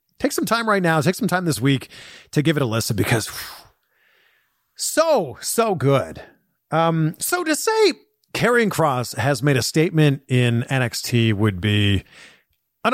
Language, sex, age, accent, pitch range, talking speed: English, male, 40-59, American, 125-200 Hz, 160 wpm